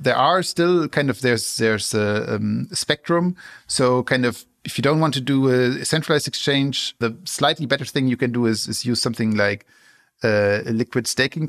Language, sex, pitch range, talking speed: English, male, 115-145 Hz, 200 wpm